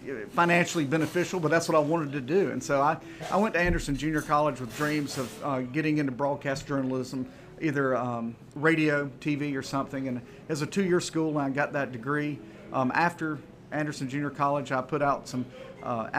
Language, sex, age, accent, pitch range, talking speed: English, male, 40-59, American, 140-165 Hz, 190 wpm